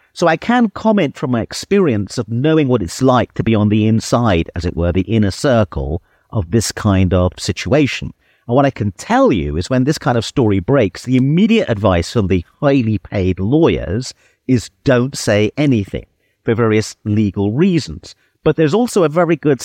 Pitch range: 100-140 Hz